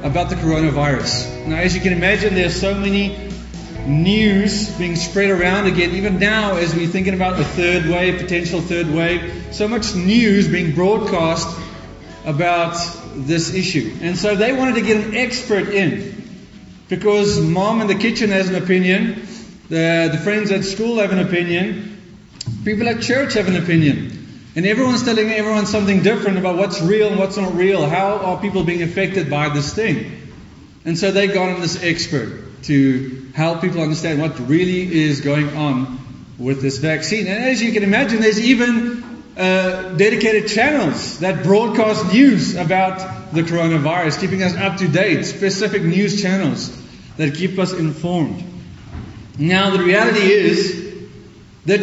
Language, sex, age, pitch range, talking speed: English, male, 30-49, 165-205 Hz, 160 wpm